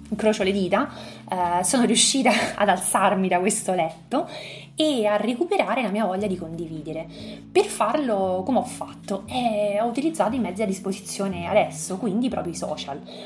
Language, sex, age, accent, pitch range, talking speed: Italian, female, 20-39, native, 185-245 Hz, 165 wpm